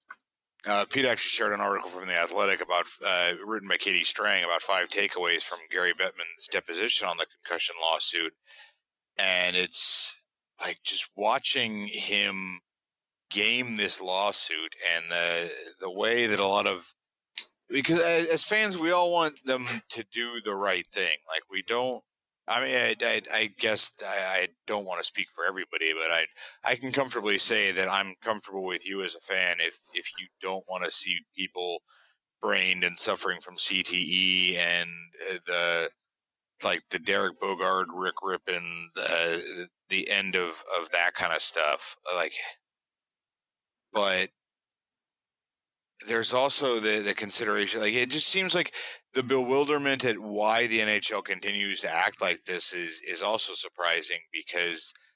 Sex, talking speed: male, 160 wpm